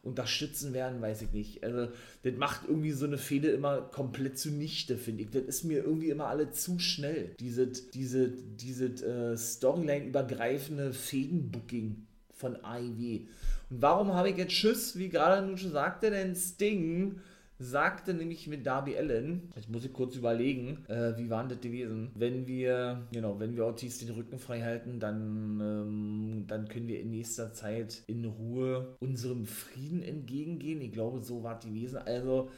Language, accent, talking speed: German, German, 160 wpm